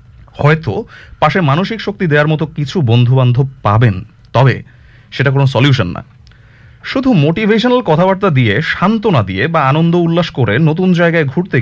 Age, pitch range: 30-49, 120-175 Hz